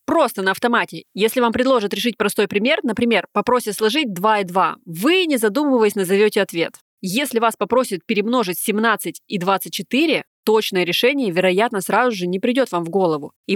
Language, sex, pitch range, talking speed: Russian, female, 180-235 Hz, 170 wpm